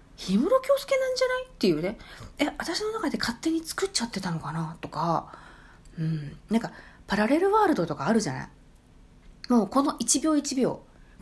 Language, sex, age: Japanese, female, 40-59